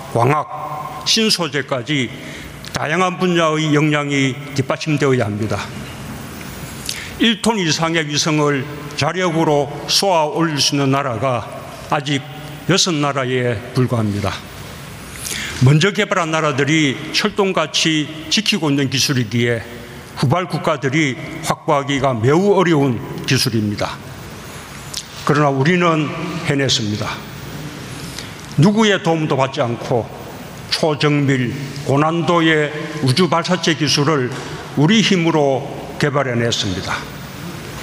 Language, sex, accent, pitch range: Korean, male, native, 135-165 Hz